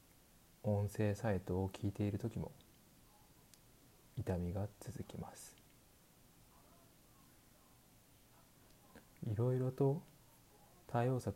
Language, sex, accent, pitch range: Japanese, male, native, 95-115 Hz